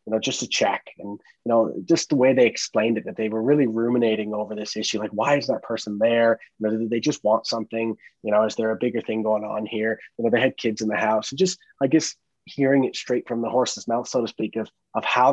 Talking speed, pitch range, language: 275 wpm, 110-125 Hz, English